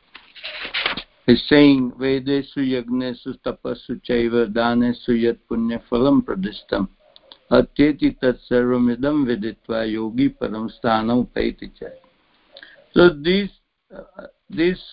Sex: male